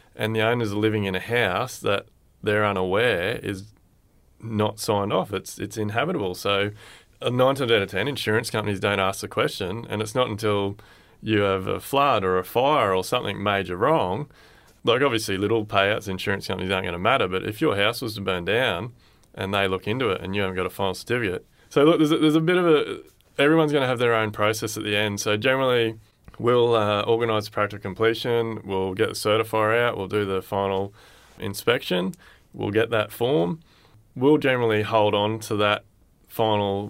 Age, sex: 20-39, male